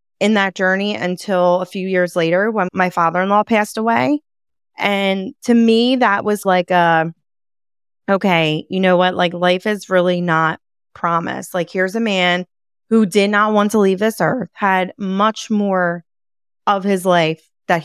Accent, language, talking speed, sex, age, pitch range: American, English, 170 wpm, female, 20-39, 170-205 Hz